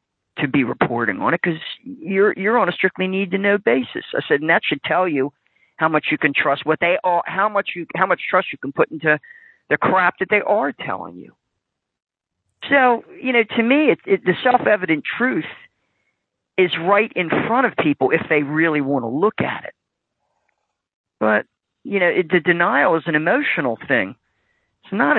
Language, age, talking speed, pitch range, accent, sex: English, 40-59, 200 wpm, 155-220 Hz, American, male